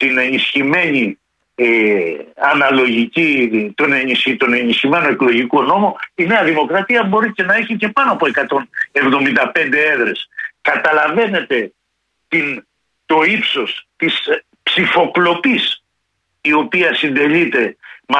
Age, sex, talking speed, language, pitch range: 60-79, male, 100 wpm, Greek, 150-245 Hz